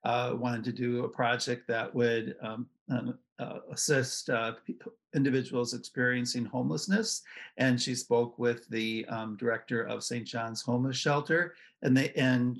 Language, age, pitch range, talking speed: English, 50-69, 115-135 Hz, 150 wpm